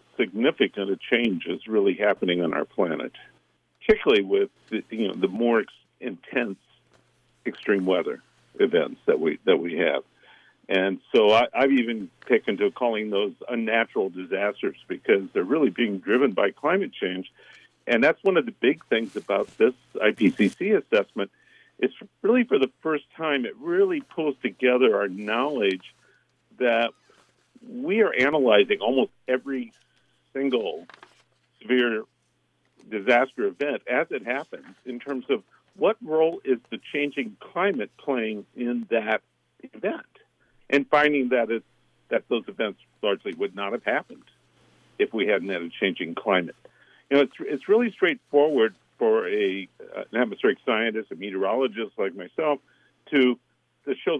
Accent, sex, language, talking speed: American, male, English, 145 wpm